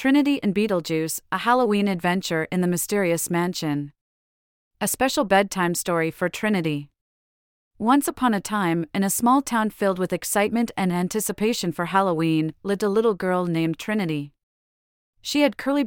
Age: 40-59